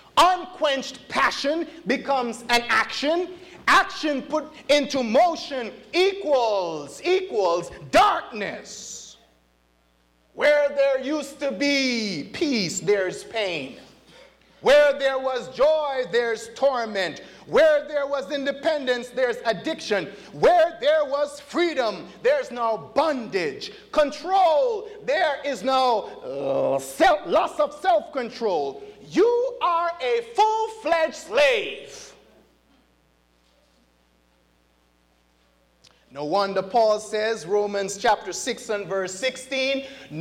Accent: American